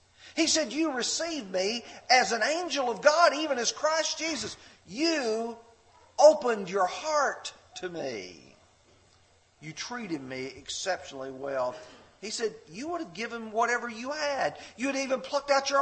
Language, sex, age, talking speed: English, male, 50-69, 150 wpm